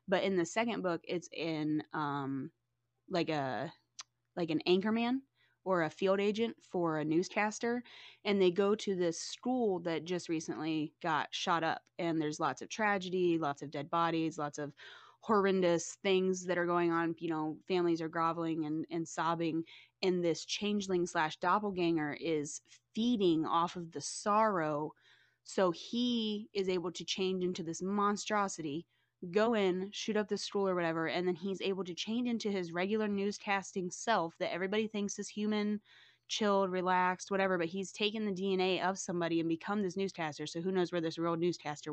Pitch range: 160-195 Hz